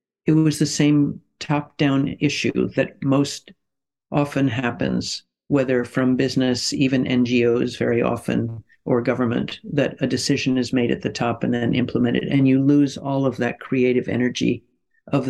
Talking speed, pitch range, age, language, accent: 155 wpm, 125-145 Hz, 50-69, English, American